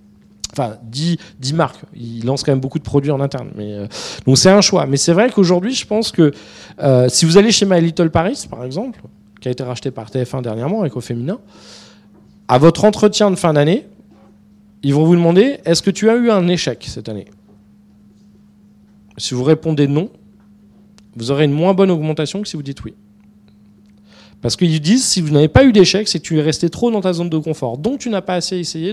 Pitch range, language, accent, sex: 120-190 Hz, French, French, male